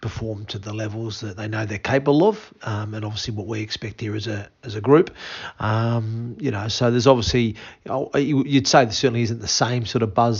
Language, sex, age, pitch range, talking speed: English, male, 30-49, 115-125 Hz, 230 wpm